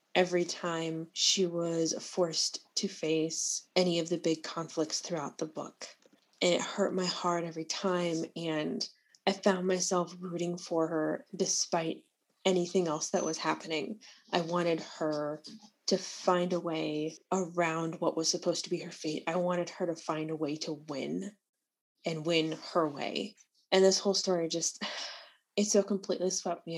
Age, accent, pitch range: 20-39, American, 160-190 Hz